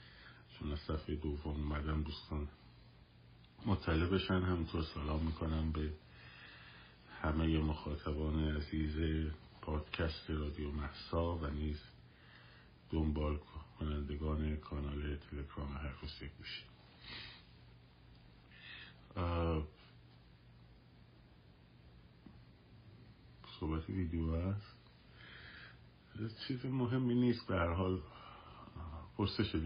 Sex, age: male, 50-69